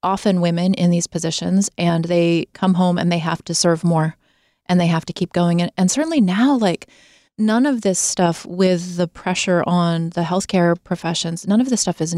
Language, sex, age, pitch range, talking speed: English, female, 30-49, 170-195 Hz, 200 wpm